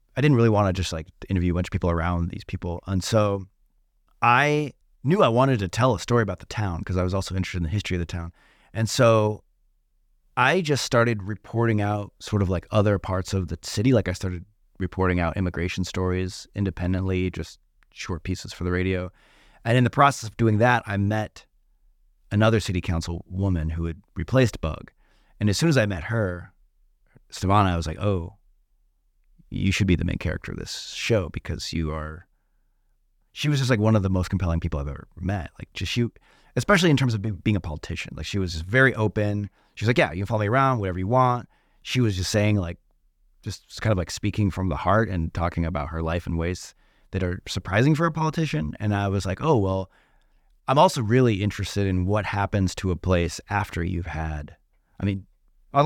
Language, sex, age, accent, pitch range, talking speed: English, male, 30-49, American, 90-110 Hz, 215 wpm